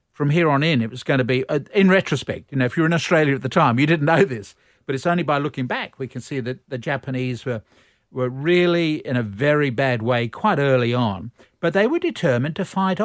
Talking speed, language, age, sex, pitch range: 255 wpm, English, 50-69, male, 125-160 Hz